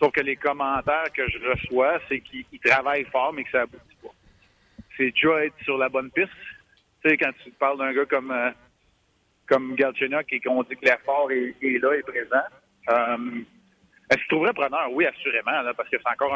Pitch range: 120-140 Hz